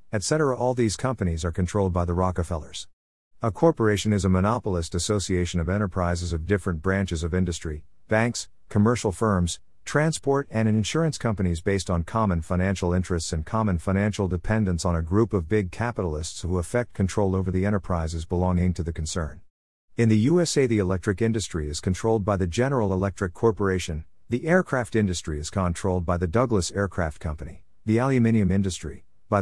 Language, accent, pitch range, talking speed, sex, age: English, American, 90-110 Hz, 165 wpm, male, 50-69